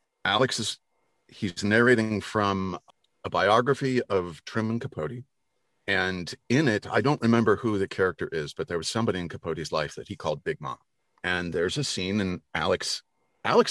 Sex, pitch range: male, 90-125 Hz